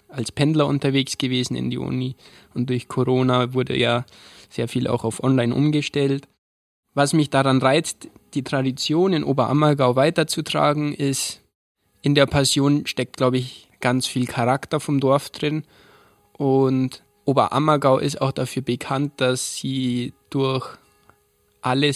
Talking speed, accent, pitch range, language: 135 wpm, German, 125-145 Hz, German